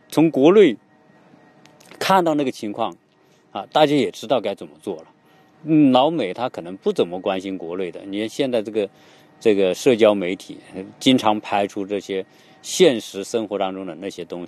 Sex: male